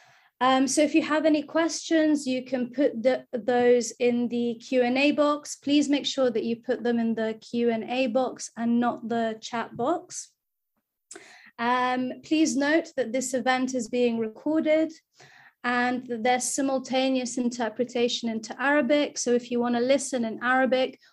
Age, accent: 30-49, British